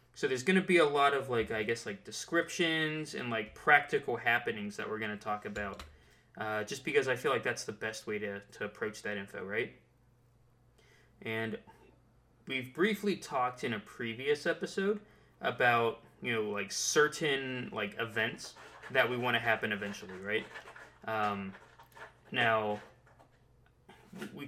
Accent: American